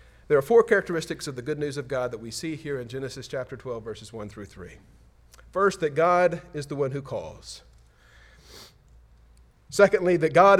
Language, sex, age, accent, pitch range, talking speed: English, male, 40-59, American, 115-180 Hz, 185 wpm